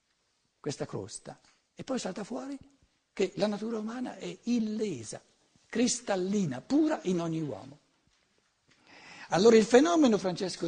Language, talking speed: Italian, 120 wpm